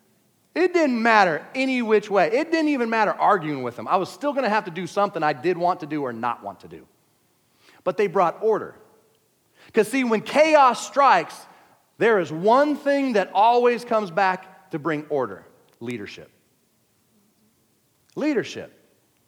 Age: 40-59